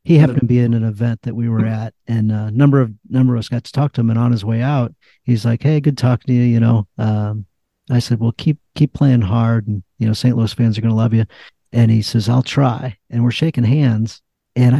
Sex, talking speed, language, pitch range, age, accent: male, 270 wpm, English, 115-130 Hz, 50-69, American